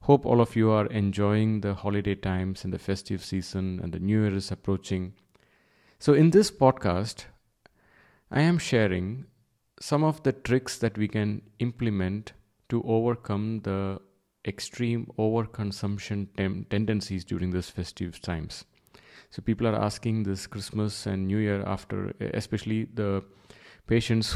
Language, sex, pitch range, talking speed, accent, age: English, male, 95-115 Hz, 145 wpm, Indian, 30-49